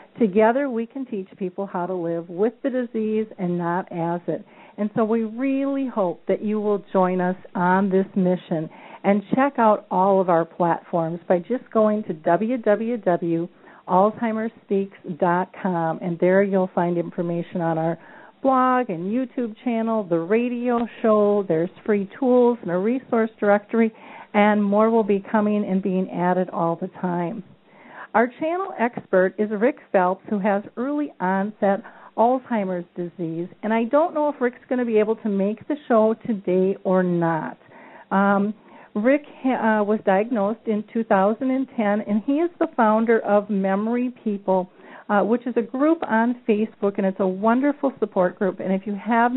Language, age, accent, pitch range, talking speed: English, 50-69, American, 185-235 Hz, 160 wpm